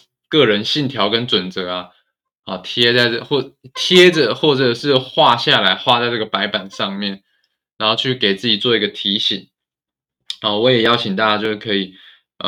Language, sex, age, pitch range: Chinese, male, 20-39, 100-125 Hz